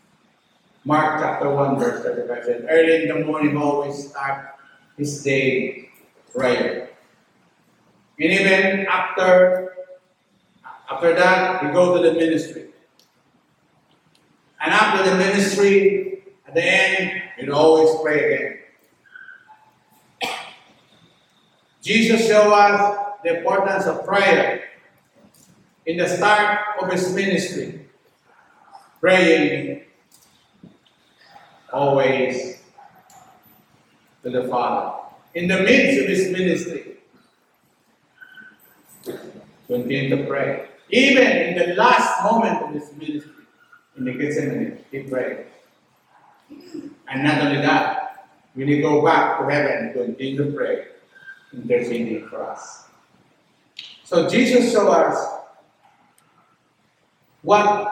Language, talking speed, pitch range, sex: English, 100 wpm, 155-230 Hz, male